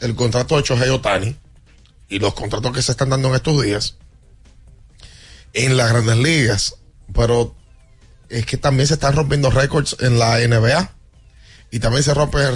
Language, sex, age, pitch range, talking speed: Spanish, male, 30-49, 115-150 Hz, 160 wpm